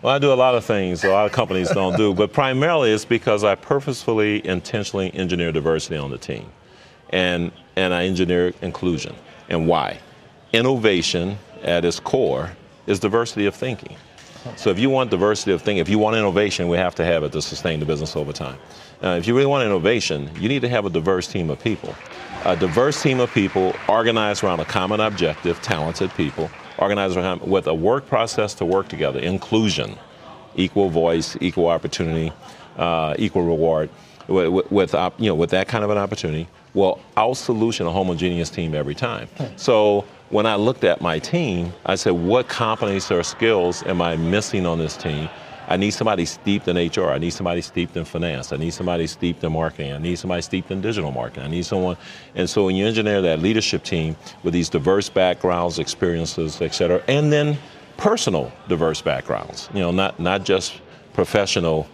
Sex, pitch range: male, 85-105 Hz